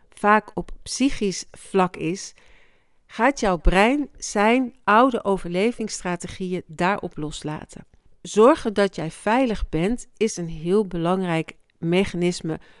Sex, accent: female, Dutch